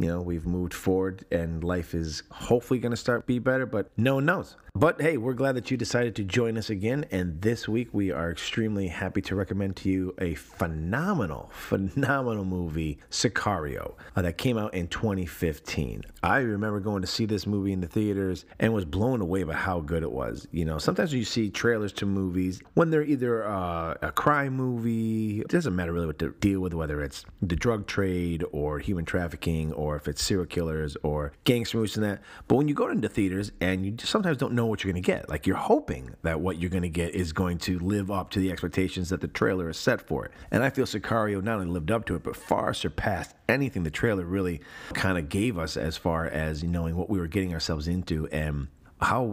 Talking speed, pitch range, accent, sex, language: 225 wpm, 85-110 Hz, American, male, English